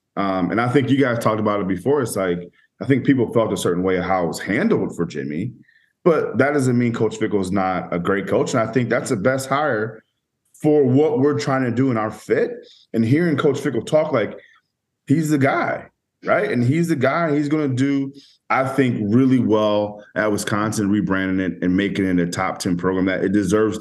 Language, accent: English, American